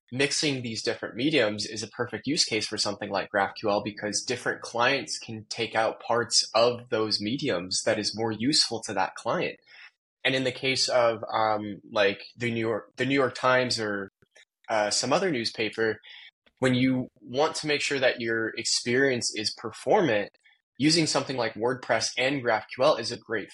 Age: 20-39